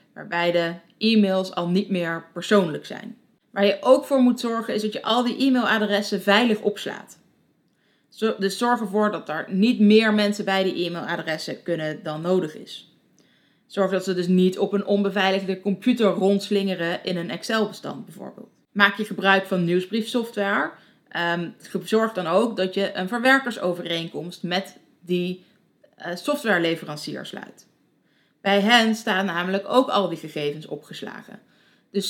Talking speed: 145 wpm